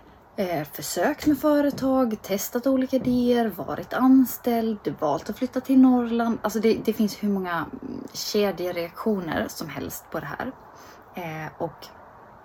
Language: Swedish